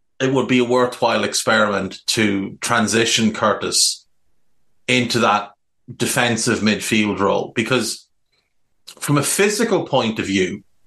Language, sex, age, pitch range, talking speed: English, male, 30-49, 110-140 Hz, 115 wpm